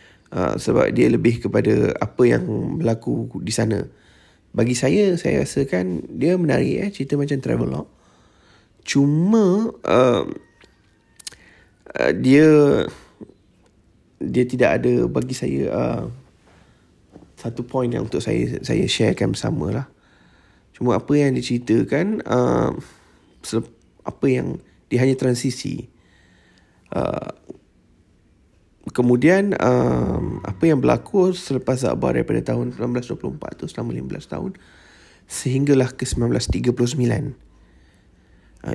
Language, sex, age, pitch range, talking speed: Malay, male, 20-39, 90-135 Hz, 105 wpm